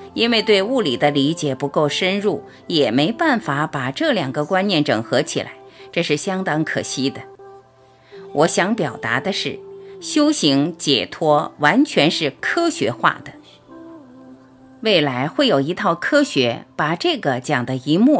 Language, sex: Chinese, female